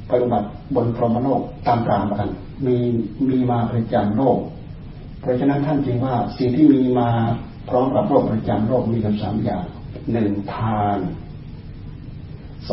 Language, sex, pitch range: Thai, male, 105-125 Hz